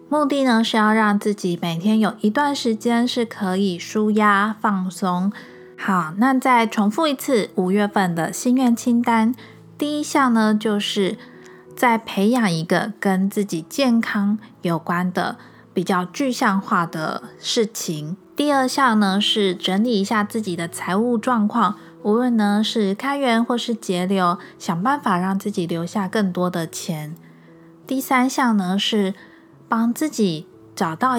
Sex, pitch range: female, 185-235 Hz